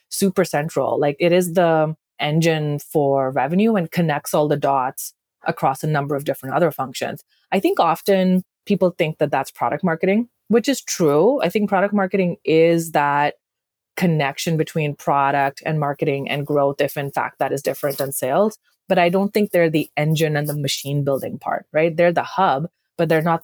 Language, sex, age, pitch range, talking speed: English, female, 30-49, 145-175 Hz, 185 wpm